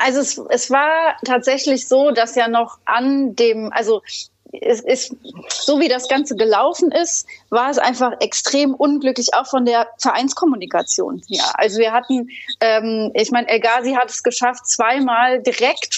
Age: 30-49